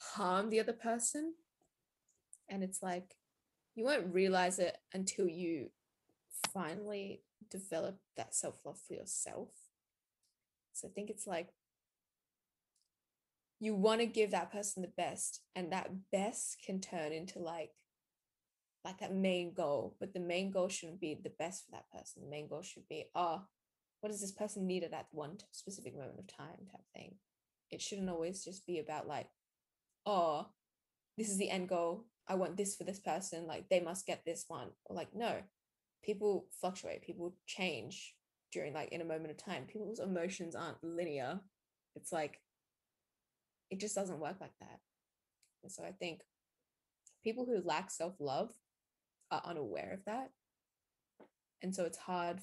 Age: 10-29